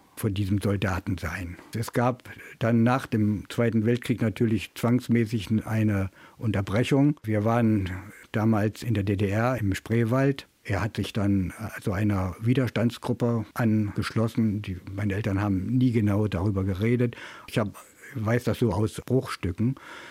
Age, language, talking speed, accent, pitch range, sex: 60-79, German, 140 wpm, German, 100-120 Hz, male